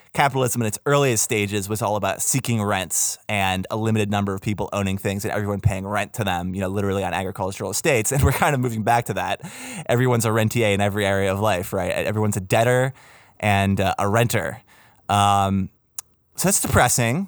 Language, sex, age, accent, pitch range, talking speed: English, male, 20-39, American, 105-140 Hz, 200 wpm